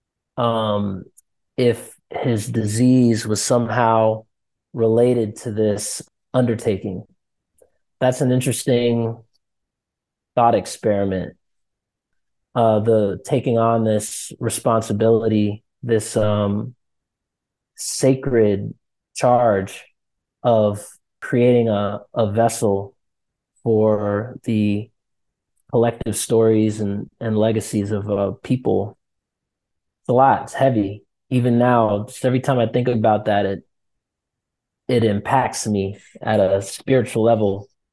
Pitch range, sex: 105-120 Hz, male